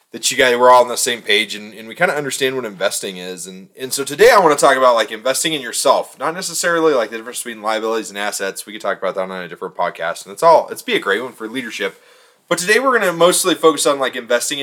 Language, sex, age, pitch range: English, male, 20-39, 105-155 Hz